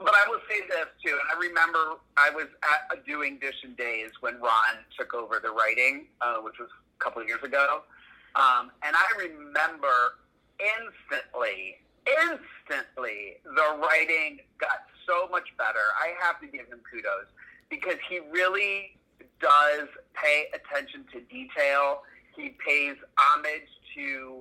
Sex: male